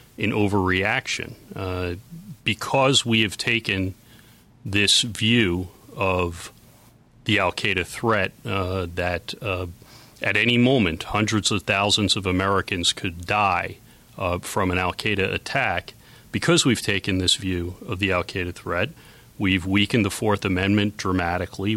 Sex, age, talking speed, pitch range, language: male, 30-49, 125 wpm, 95-110 Hz, English